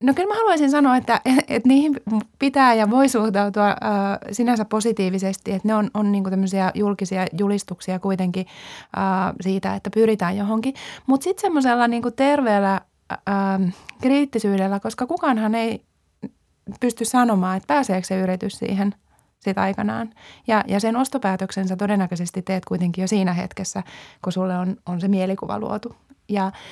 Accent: native